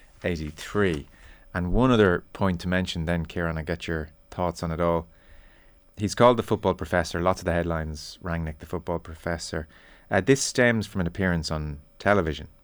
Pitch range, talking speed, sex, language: 80-100 Hz, 180 wpm, male, English